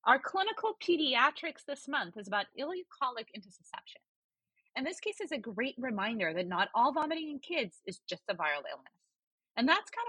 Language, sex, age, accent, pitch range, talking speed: English, female, 30-49, American, 205-295 Hz, 180 wpm